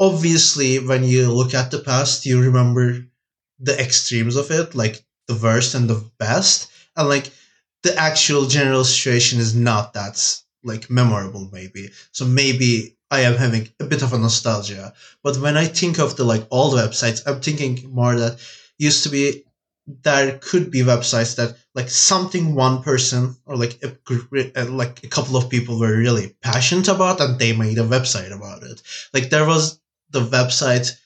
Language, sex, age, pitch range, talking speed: English, male, 20-39, 115-140 Hz, 175 wpm